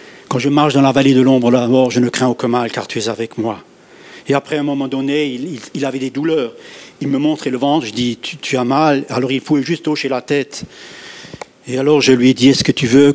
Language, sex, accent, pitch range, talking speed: French, male, French, 130-160 Hz, 275 wpm